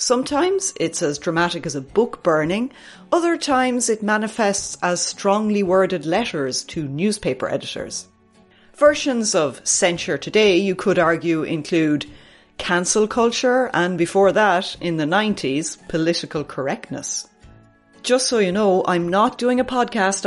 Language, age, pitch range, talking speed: English, 30-49, 165-230 Hz, 135 wpm